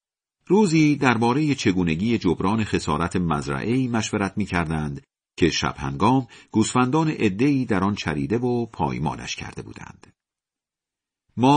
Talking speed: 110 wpm